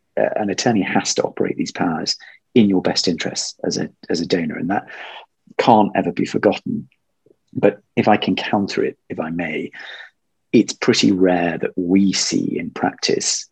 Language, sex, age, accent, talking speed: English, male, 40-59, British, 175 wpm